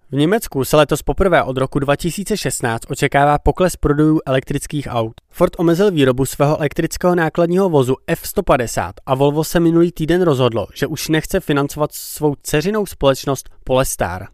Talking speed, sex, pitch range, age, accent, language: 145 wpm, male, 130-165 Hz, 20-39, native, Czech